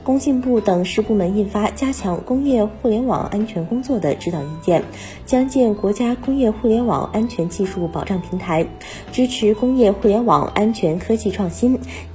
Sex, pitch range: female, 180-245 Hz